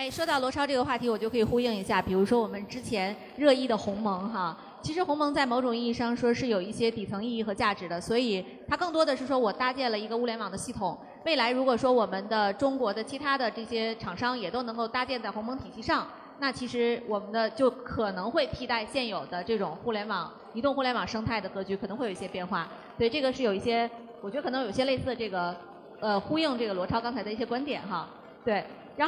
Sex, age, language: female, 30-49, Chinese